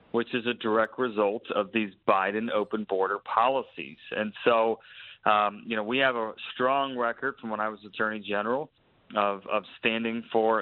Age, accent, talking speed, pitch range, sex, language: 30-49, American, 175 wpm, 105-120 Hz, male, English